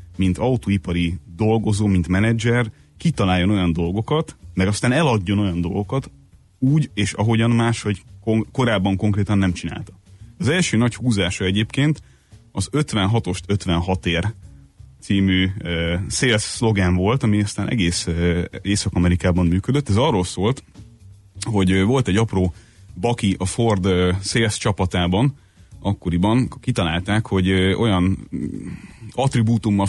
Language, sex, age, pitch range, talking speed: Hungarian, male, 30-49, 90-110 Hz, 115 wpm